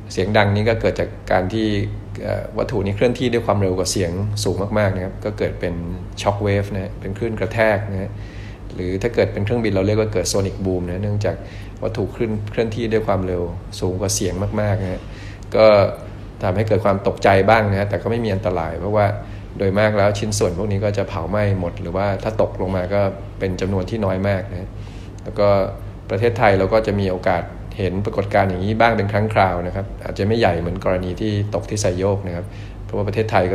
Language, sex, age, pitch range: Thai, male, 20-39, 95-105 Hz